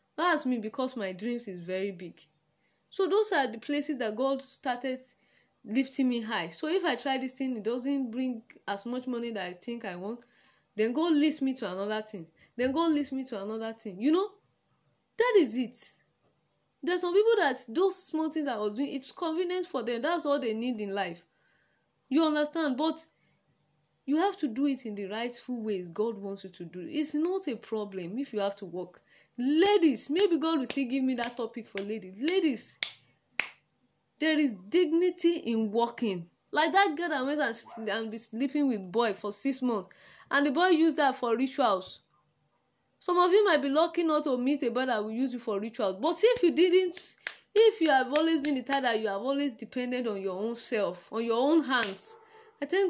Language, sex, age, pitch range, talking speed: English, female, 10-29, 225-315 Hz, 205 wpm